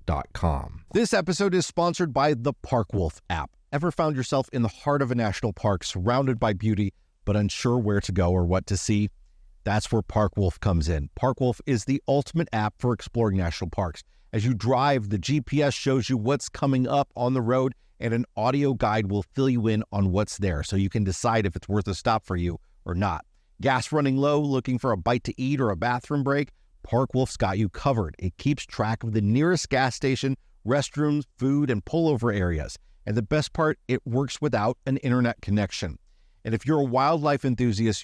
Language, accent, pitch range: English, American, 100-130 Hz